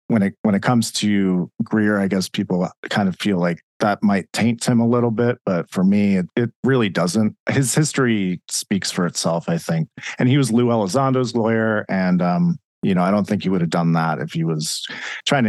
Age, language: 40-59, English